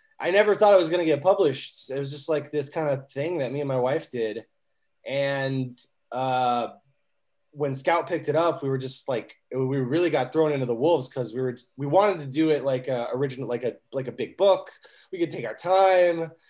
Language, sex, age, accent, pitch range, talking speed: English, male, 20-39, American, 130-170 Hz, 225 wpm